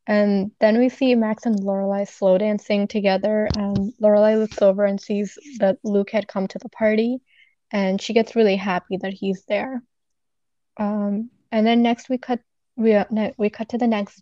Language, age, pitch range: English, 20-39, 195-215 Hz